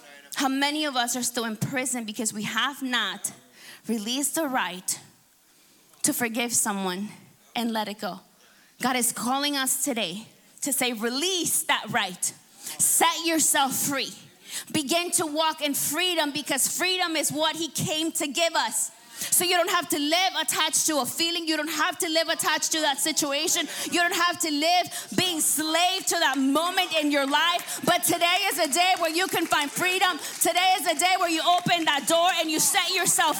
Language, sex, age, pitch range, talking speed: English, female, 20-39, 255-340 Hz, 185 wpm